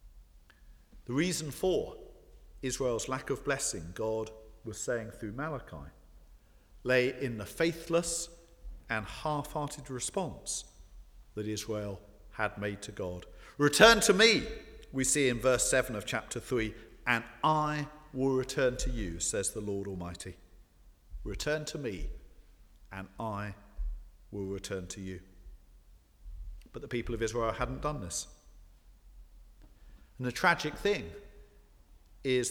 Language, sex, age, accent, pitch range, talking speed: English, male, 50-69, British, 90-130 Hz, 125 wpm